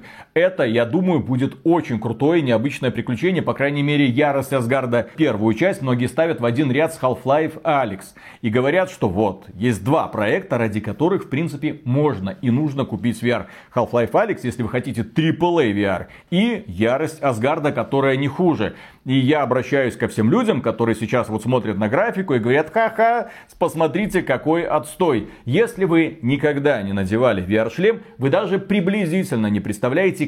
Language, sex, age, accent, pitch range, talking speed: Russian, male, 40-59, native, 115-160 Hz, 160 wpm